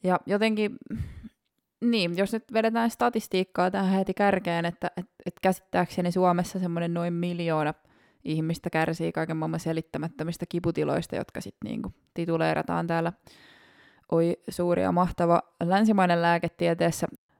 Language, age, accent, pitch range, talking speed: Finnish, 20-39, native, 170-220 Hz, 120 wpm